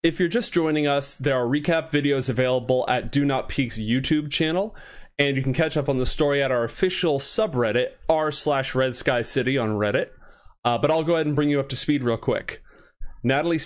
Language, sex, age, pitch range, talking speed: English, male, 30-49, 120-155 Hz, 205 wpm